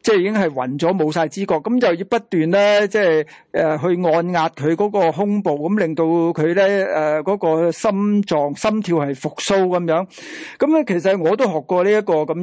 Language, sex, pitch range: Chinese, male, 160-210 Hz